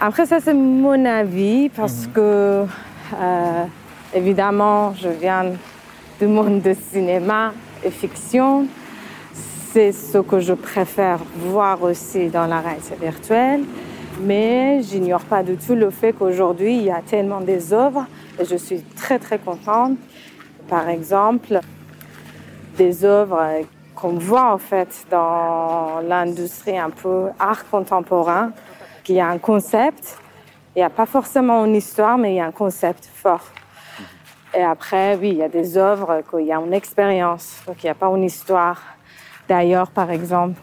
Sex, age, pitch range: female, 30-49, 175-210 Hz